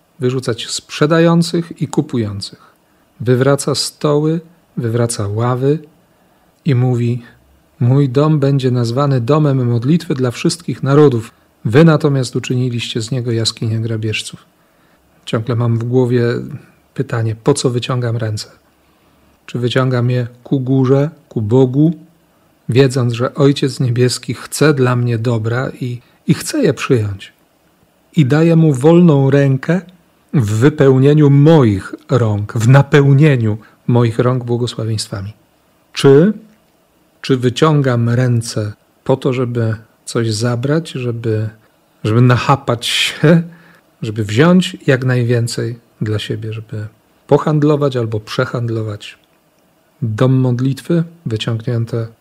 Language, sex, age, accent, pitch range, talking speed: Polish, male, 40-59, native, 115-150 Hz, 110 wpm